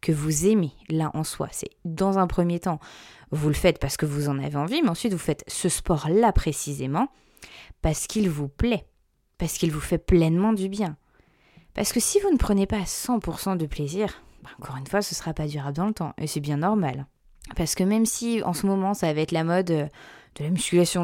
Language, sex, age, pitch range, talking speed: French, female, 20-39, 160-205 Hz, 220 wpm